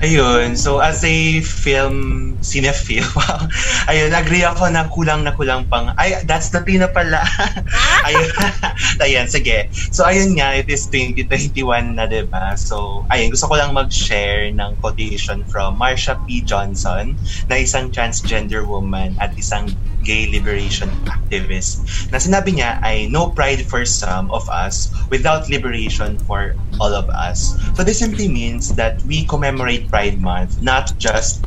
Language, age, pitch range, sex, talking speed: English, 20-39, 95-125 Hz, male, 145 wpm